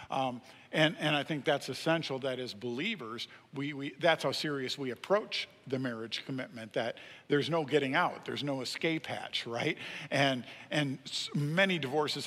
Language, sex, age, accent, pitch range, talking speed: English, male, 50-69, American, 125-150 Hz, 165 wpm